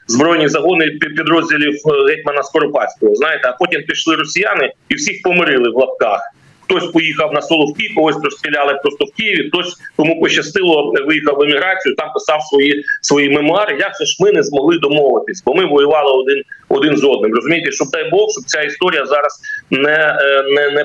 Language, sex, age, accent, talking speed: Ukrainian, male, 40-59, native, 170 wpm